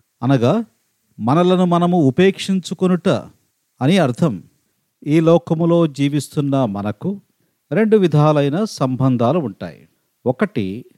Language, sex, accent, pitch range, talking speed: Telugu, male, native, 140-195 Hz, 80 wpm